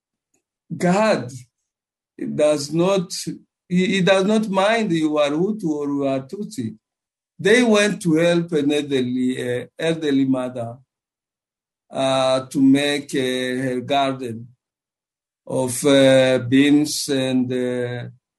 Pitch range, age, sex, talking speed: 135-180 Hz, 50-69, male, 115 wpm